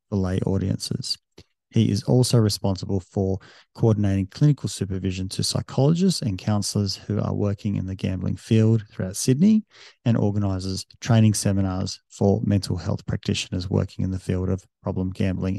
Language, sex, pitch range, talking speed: English, male, 100-115 Hz, 150 wpm